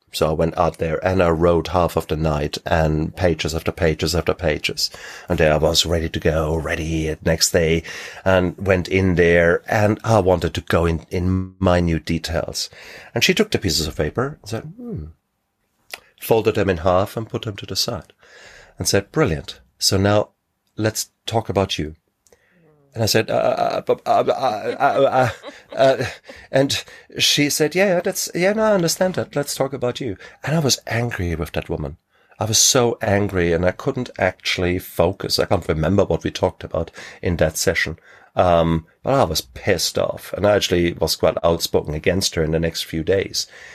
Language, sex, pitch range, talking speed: English, male, 85-120 Hz, 195 wpm